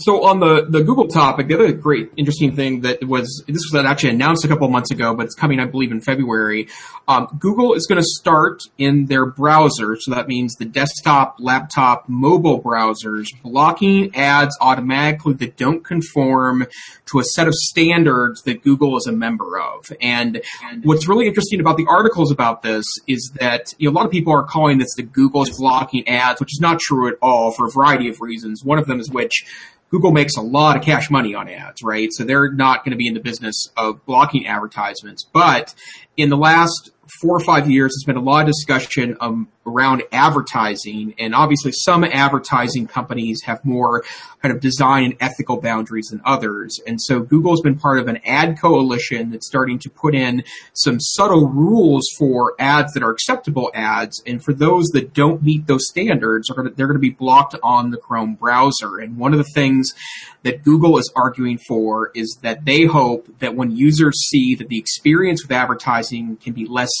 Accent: American